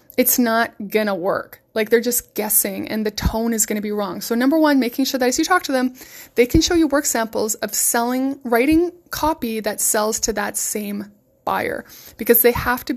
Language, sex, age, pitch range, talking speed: English, female, 20-39, 220-255 Hz, 220 wpm